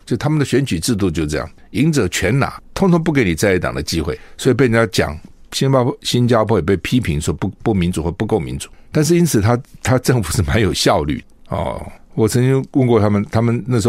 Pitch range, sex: 90-125 Hz, male